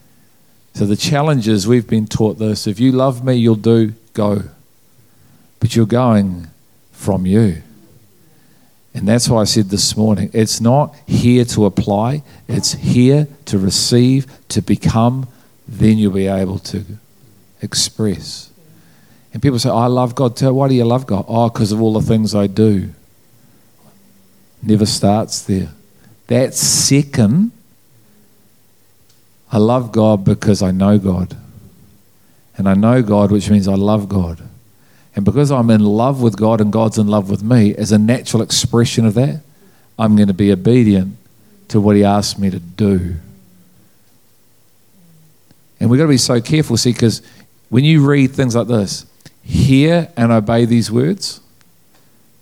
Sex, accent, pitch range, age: male, Australian, 105-125 Hz, 50-69